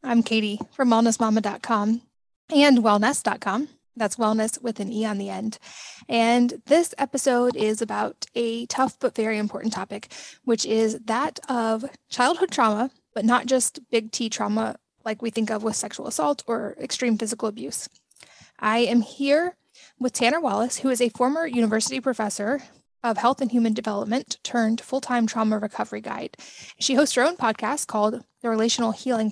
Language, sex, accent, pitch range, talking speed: English, female, American, 220-250 Hz, 160 wpm